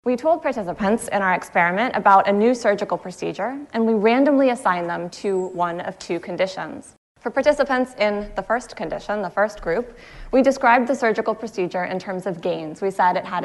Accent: American